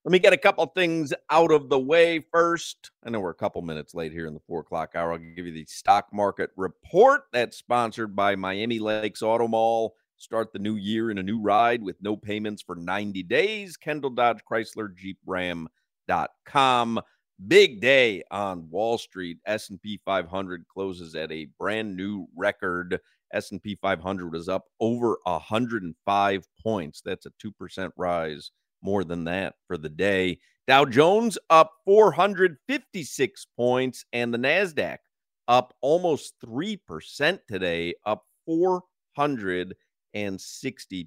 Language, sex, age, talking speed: English, male, 50-69, 150 wpm